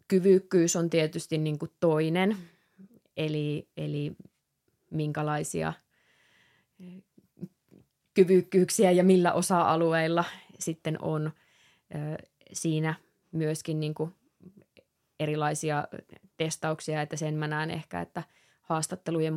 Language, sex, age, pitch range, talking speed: Finnish, female, 20-39, 155-175 Hz, 80 wpm